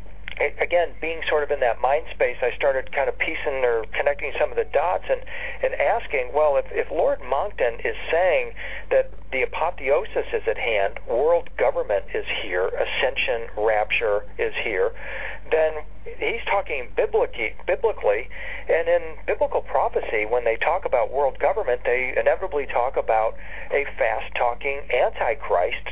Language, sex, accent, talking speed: English, male, American, 150 wpm